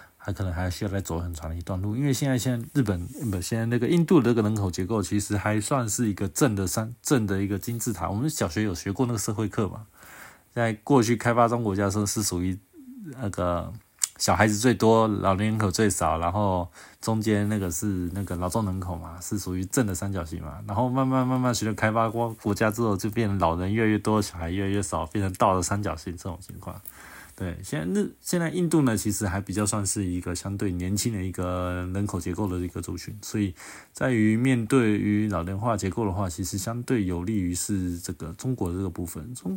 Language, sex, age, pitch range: Chinese, male, 20-39, 95-120 Hz